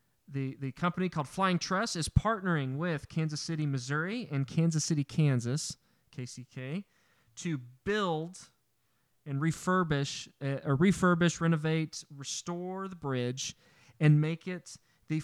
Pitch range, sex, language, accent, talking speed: 130-165 Hz, male, English, American, 120 wpm